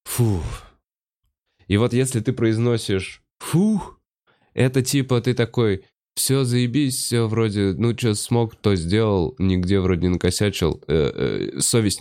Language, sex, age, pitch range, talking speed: Russian, male, 20-39, 90-120 Hz, 135 wpm